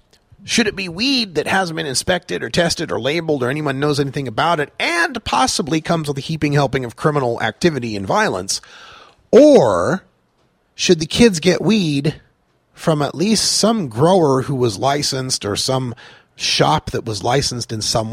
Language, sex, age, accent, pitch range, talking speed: English, male, 30-49, American, 110-160 Hz, 170 wpm